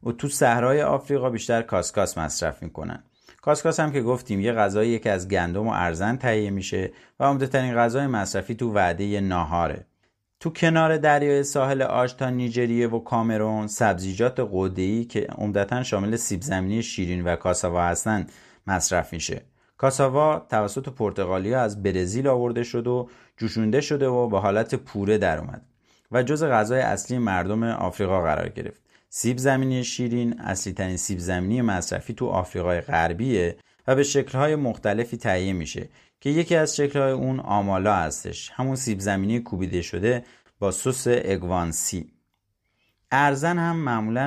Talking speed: 145 wpm